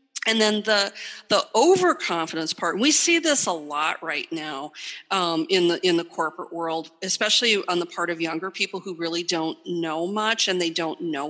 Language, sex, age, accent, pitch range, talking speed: English, female, 40-59, American, 165-225 Hz, 195 wpm